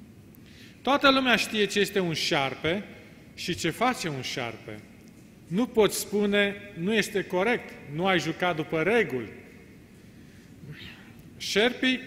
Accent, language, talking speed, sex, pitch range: native, Romanian, 120 wpm, male, 165-200 Hz